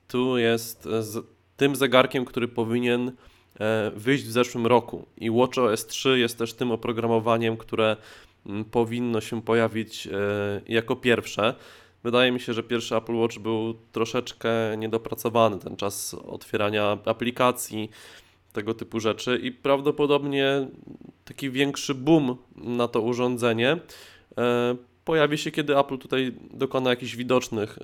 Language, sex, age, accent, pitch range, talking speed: Polish, male, 20-39, native, 105-130 Hz, 120 wpm